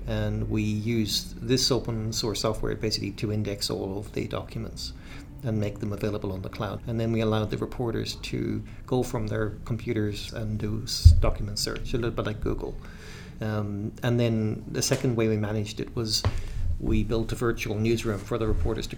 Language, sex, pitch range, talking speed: English, male, 105-125 Hz, 190 wpm